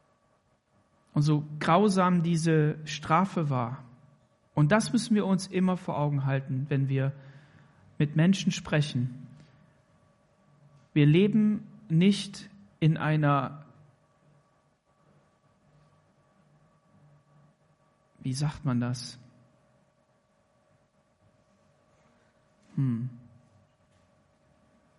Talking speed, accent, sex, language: 70 wpm, German, male, German